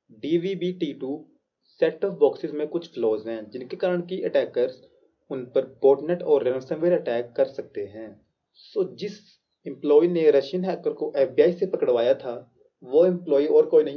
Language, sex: Hindi, male